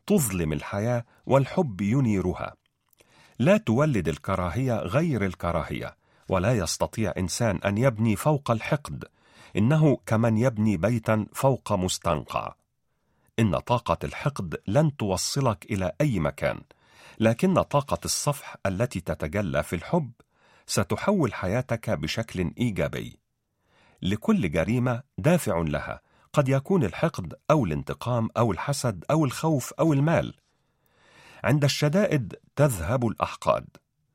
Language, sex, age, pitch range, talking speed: Arabic, male, 40-59, 95-140 Hz, 105 wpm